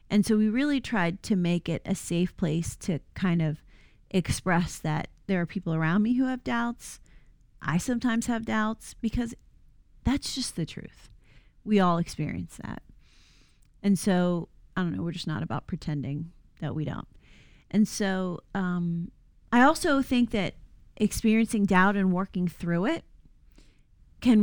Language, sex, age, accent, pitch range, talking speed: English, female, 30-49, American, 165-215 Hz, 155 wpm